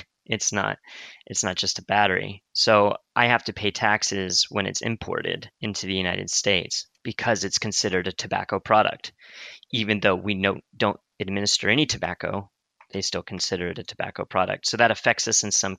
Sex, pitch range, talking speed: male, 95-105 Hz, 180 wpm